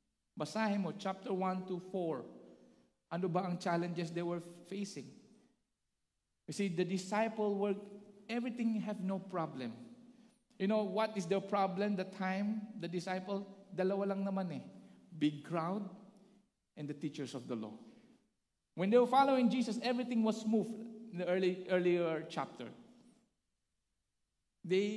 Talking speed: 135 wpm